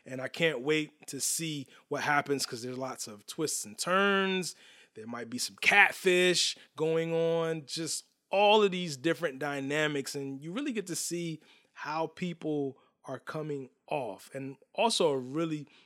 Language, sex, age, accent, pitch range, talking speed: English, male, 20-39, American, 135-165 Hz, 165 wpm